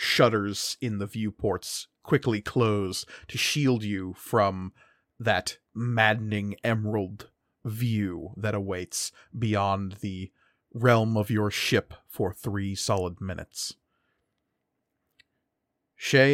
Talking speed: 100 wpm